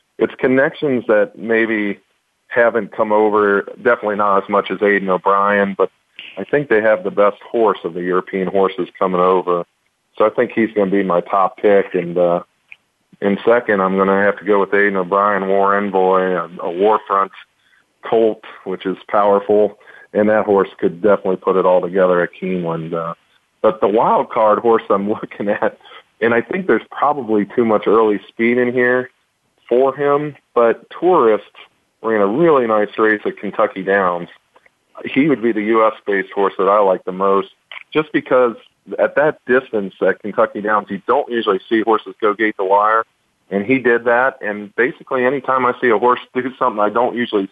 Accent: American